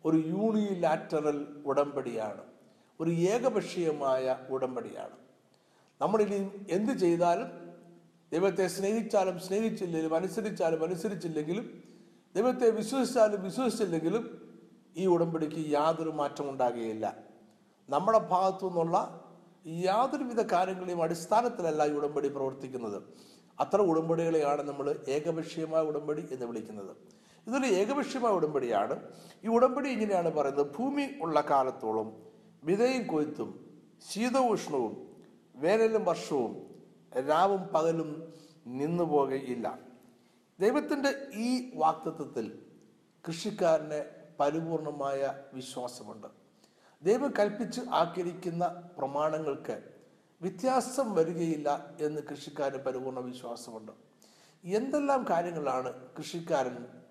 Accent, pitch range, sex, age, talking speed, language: native, 145-205 Hz, male, 60-79, 80 wpm, Malayalam